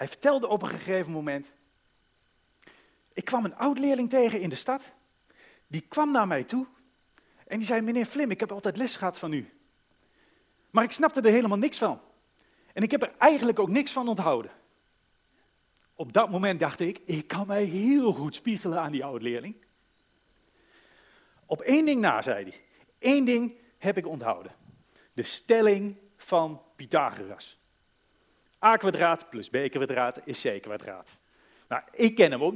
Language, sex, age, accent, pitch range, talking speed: Dutch, male, 40-59, Dutch, 155-225 Hz, 155 wpm